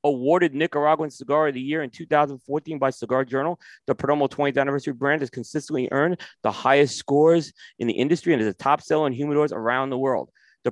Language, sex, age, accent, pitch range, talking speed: English, male, 30-49, American, 125-155 Hz, 200 wpm